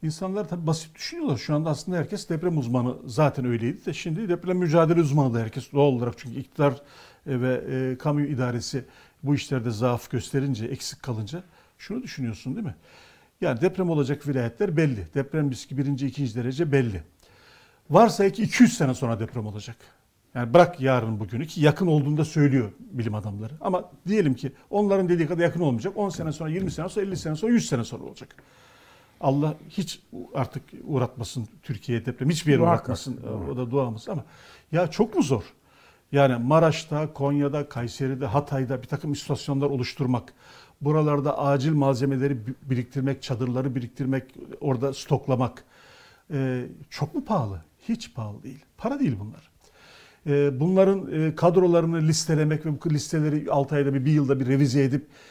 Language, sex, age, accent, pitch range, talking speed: Turkish, male, 50-69, native, 130-160 Hz, 155 wpm